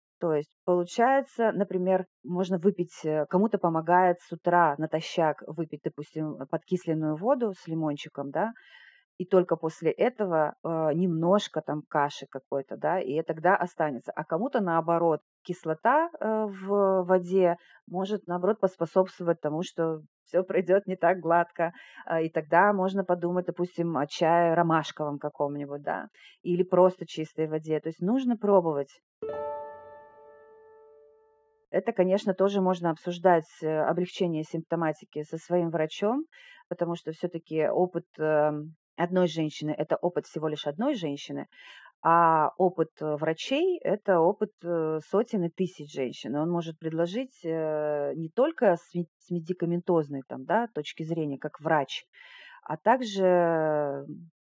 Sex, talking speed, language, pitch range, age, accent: female, 120 wpm, Russian, 155-185 Hz, 30-49, native